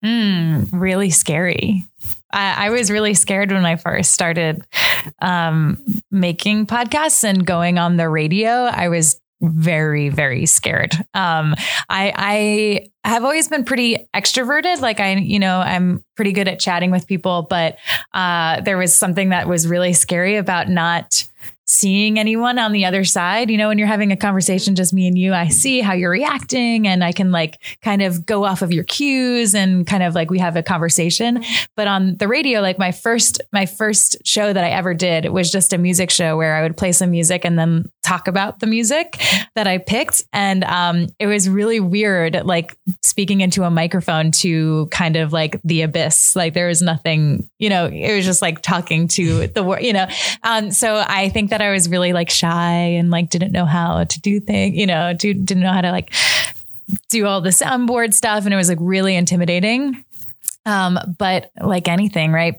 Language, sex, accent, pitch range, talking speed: English, female, American, 170-210 Hz, 200 wpm